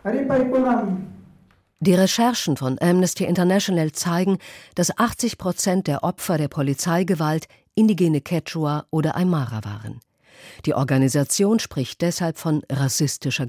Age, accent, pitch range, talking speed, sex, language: 50-69, German, 135-185 Hz, 105 wpm, female, German